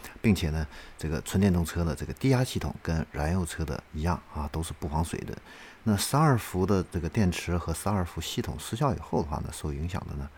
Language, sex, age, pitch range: Chinese, male, 50-69, 75-95 Hz